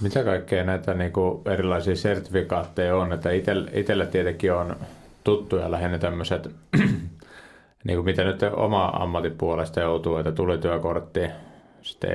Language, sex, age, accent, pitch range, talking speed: Finnish, male, 30-49, native, 85-95 Hz, 115 wpm